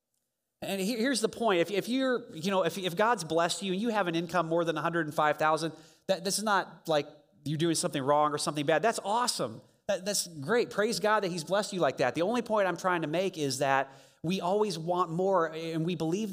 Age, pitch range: 30-49, 145-185 Hz